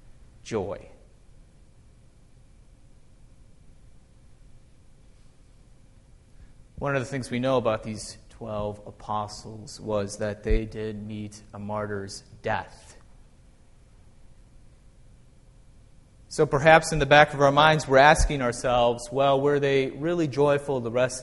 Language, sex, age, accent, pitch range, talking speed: English, male, 30-49, American, 105-140 Hz, 105 wpm